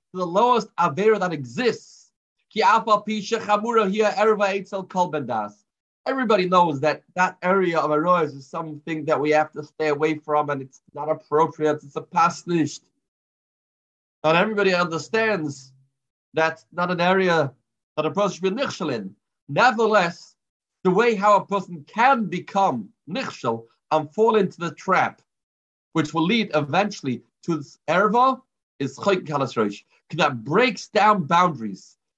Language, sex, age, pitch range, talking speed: English, male, 30-49, 150-200 Hz, 130 wpm